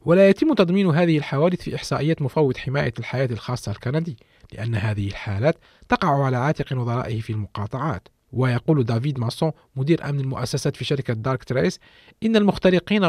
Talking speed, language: 150 wpm, Arabic